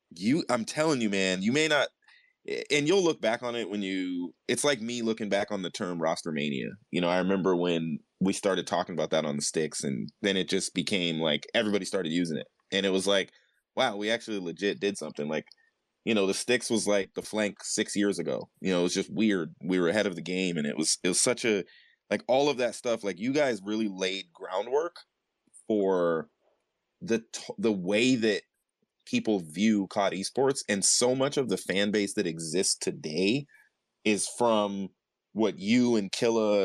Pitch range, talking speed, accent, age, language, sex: 90-110 Hz, 205 wpm, American, 20-39, English, male